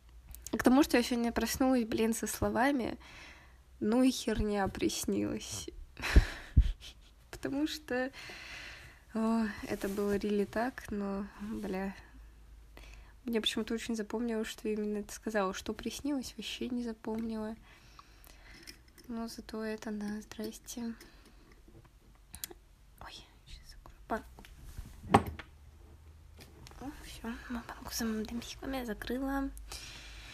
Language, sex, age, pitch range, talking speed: Russian, female, 20-39, 205-235 Hz, 90 wpm